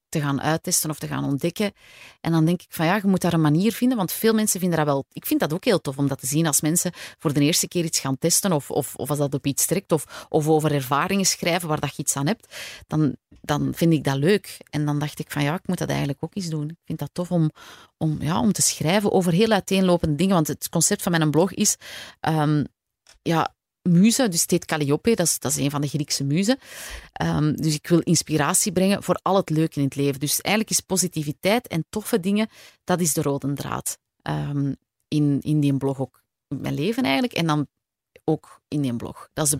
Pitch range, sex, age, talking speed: 140-175 Hz, female, 30-49, 245 wpm